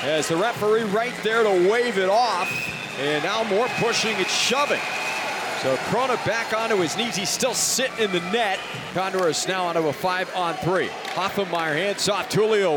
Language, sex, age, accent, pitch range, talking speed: English, male, 40-59, American, 185-225 Hz, 185 wpm